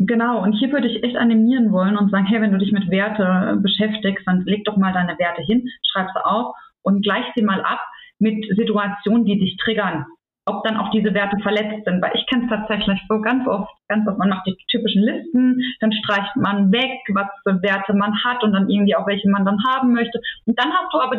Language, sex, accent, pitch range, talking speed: German, female, German, 200-245 Hz, 230 wpm